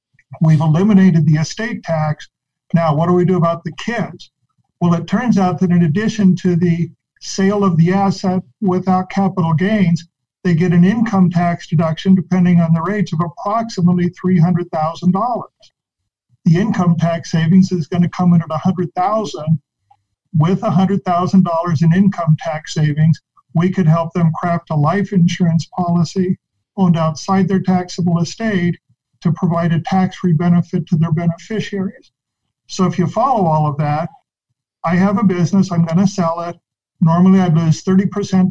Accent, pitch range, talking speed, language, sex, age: American, 160-185 Hz, 155 wpm, English, male, 50-69